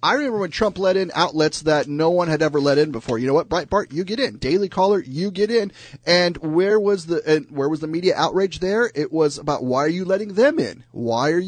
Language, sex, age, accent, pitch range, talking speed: English, male, 30-49, American, 130-180 Hz, 265 wpm